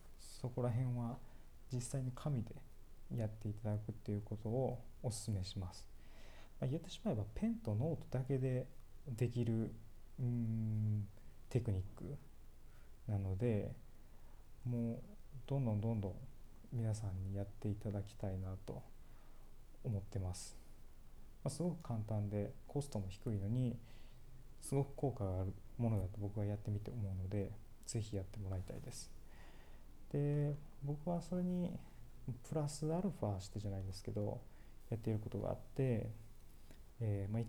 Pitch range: 100-125 Hz